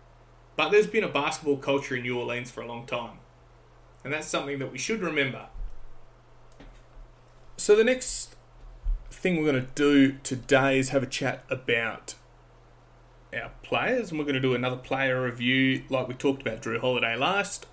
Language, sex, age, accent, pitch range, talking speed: English, male, 20-39, Australian, 130-165 Hz, 170 wpm